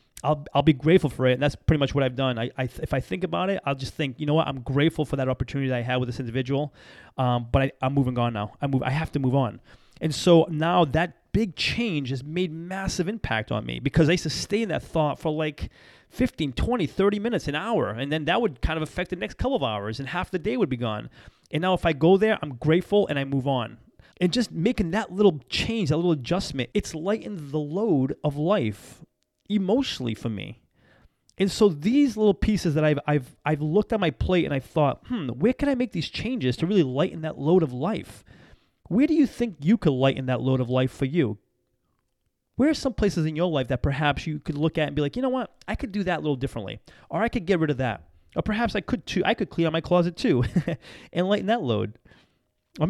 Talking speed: 250 wpm